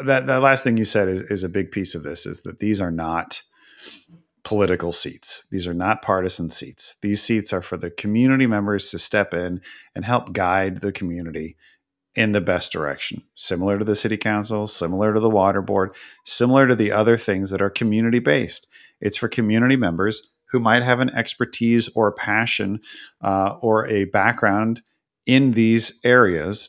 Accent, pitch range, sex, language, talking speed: American, 95-110 Hz, male, English, 185 wpm